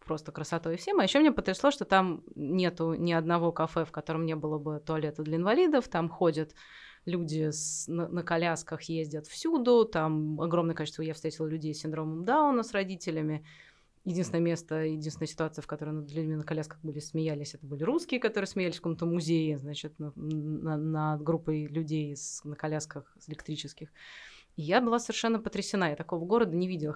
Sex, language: female, Russian